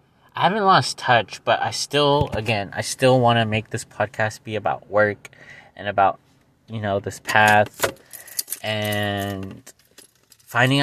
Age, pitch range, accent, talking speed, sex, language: 20-39, 100-120 Hz, American, 145 wpm, male, English